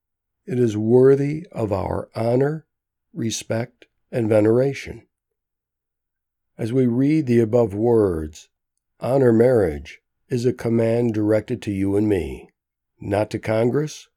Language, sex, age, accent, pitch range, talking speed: English, male, 60-79, American, 105-130 Hz, 120 wpm